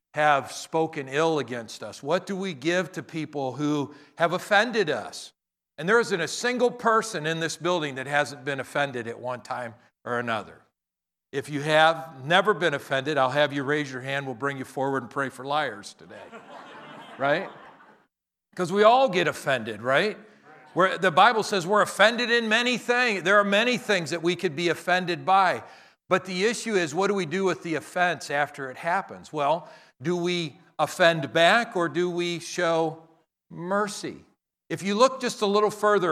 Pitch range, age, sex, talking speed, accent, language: 145-195 Hz, 50-69, male, 185 wpm, American, English